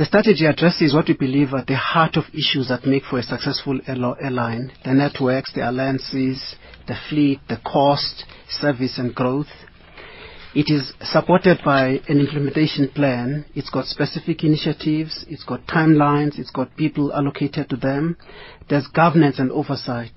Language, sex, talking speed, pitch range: English, male, 155 wpm, 130-150 Hz